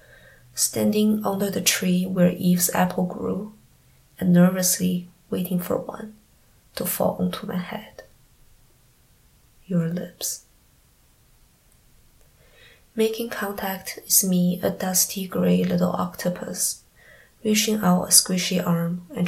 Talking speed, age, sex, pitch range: 110 wpm, 20-39, female, 175-195 Hz